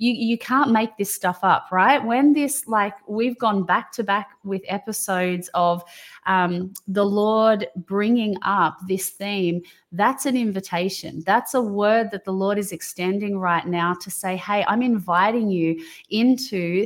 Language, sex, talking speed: English, female, 165 wpm